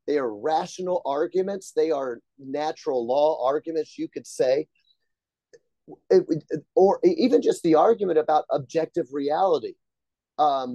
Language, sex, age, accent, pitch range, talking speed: English, male, 30-49, American, 145-230 Hz, 115 wpm